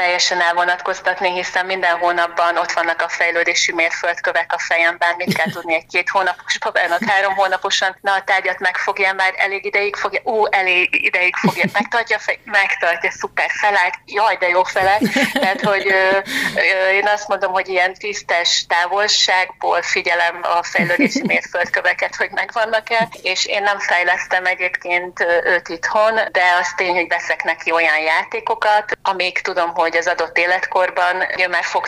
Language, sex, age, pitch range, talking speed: Hungarian, female, 30-49, 170-195 Hz, 160 wpm